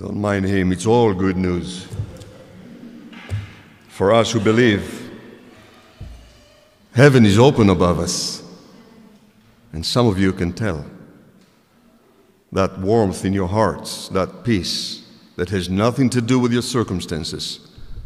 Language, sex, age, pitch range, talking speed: English, male, 50-69, 95-130 Hz, 125 wpm